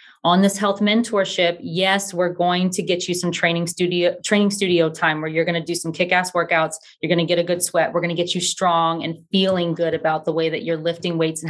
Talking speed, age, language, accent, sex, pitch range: 250 wpm, 20-39, English, American, female, 175-195 Hz